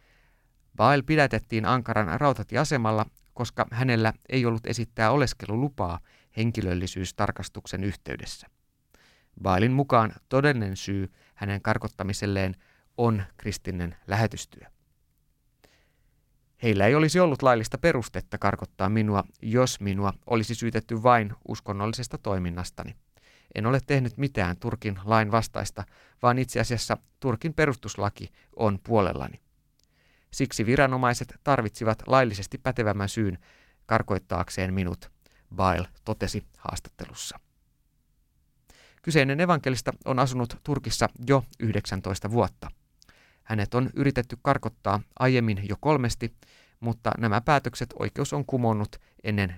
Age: 30-49